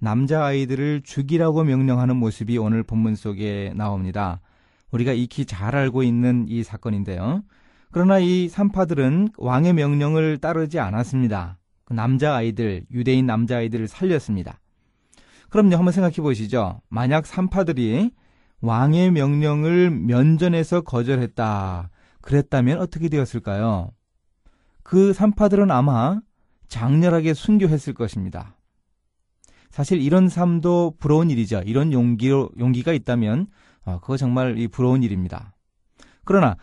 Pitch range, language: 110-160 Hz, Korean